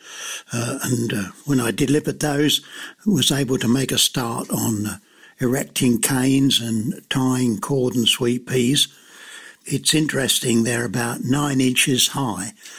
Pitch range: 115-140 Hz